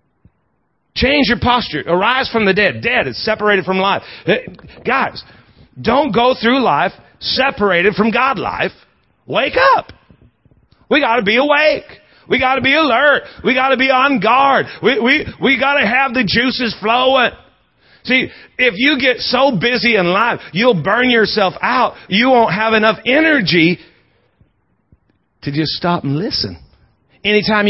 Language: English